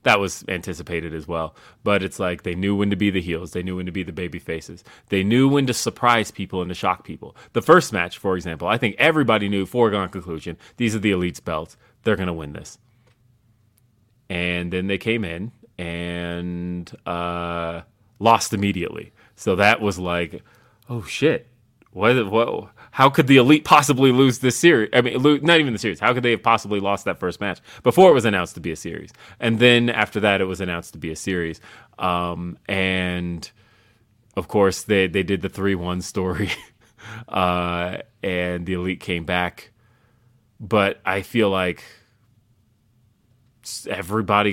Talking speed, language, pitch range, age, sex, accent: 180 wpm, English, 90-115 Hz, 30-49, male, American